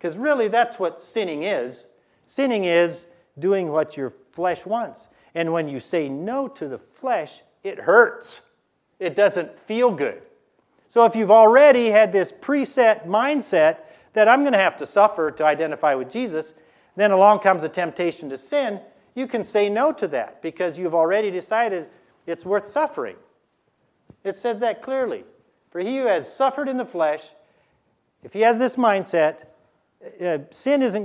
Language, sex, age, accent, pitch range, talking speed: English, male, 50-69, American, 160-235 Hz, 165 wpm